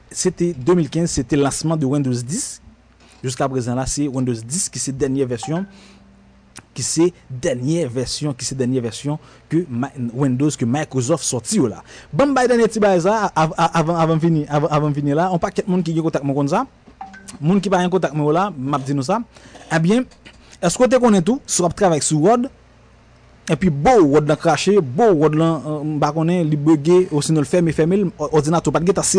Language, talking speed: French, 190 wpm